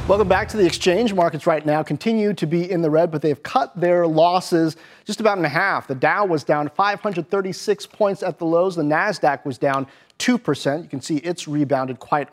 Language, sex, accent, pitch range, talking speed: English, male, American, 150-185 Hz, 215 wpm